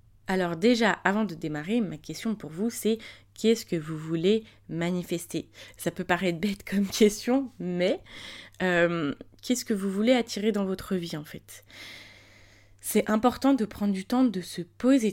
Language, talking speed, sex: French, 185 wpm, female